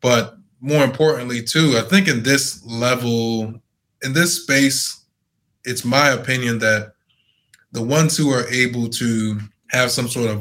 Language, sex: English, male